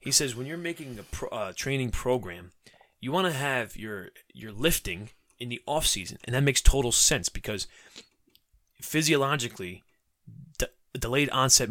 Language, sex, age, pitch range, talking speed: English, male, 20-39, 110-135 Hz, 160 wpm